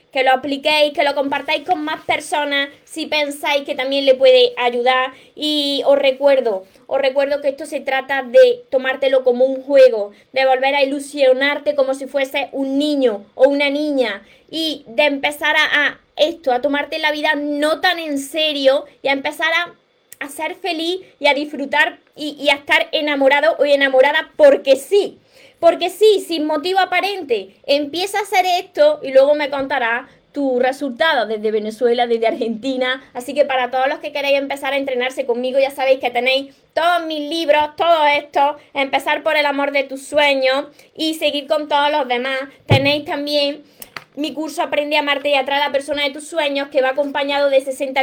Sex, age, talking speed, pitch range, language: female, 20-39, 185 wpm, 260-300 Hz, Spanish